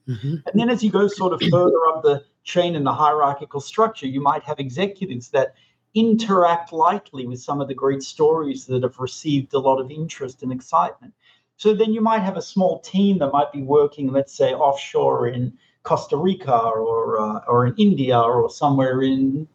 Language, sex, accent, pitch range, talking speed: English, male, Australian, 135-185 Hz, 195 wpm